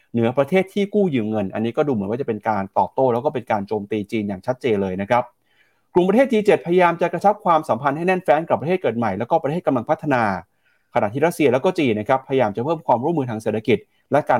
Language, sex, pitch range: Thai, male, 115-165 Hz